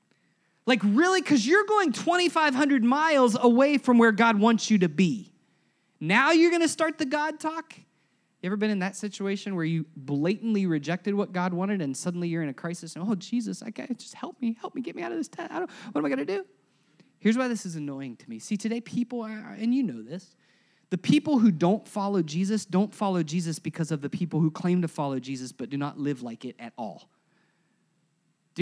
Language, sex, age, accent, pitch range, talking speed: English, male, 30-49, American, 190-260 Hz, 215 wpm